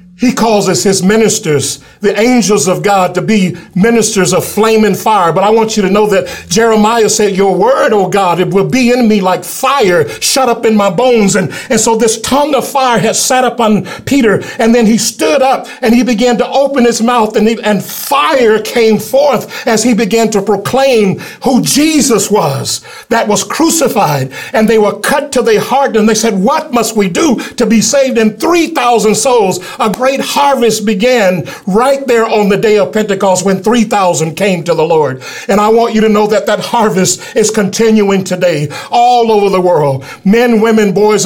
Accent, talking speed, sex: American, 200 wpm, male